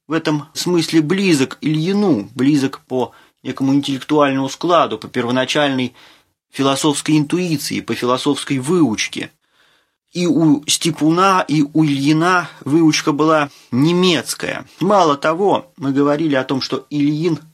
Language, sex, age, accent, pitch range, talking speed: Russian, male, 30-49, native, 135-160 Hz, 115 wpm